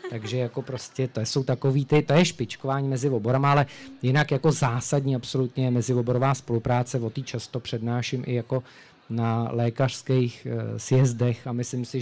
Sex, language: male, Czech